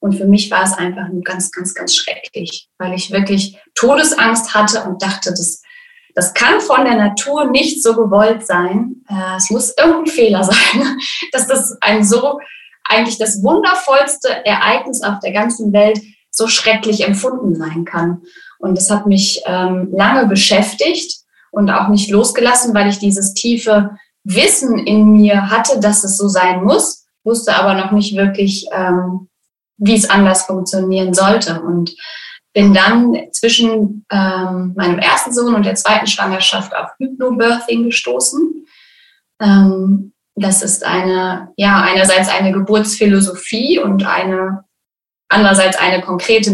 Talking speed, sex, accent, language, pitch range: 145 wpm, female, German, German, 190-230 Hz